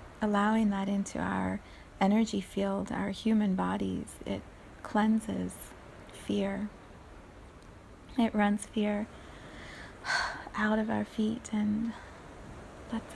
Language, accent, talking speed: English, American, 95 wpm